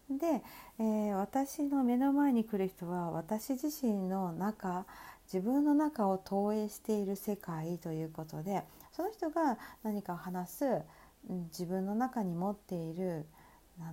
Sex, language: female, Japanese